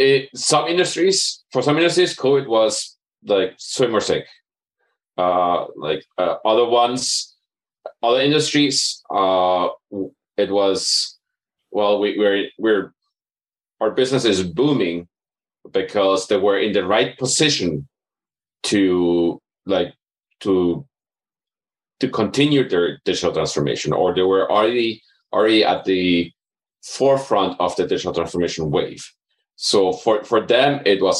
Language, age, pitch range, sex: English, 30-49, 90-135 Hz, male